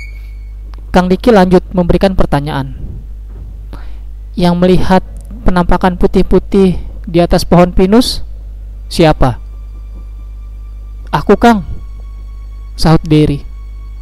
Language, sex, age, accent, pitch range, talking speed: Indonesian, male, 20-39, native, 105-175 Hz, 75 wpm